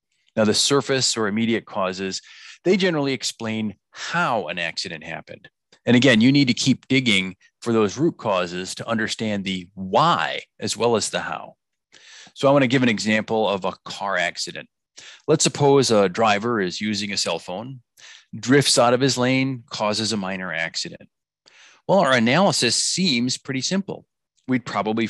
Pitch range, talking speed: 110-145 Hz, 165 wpm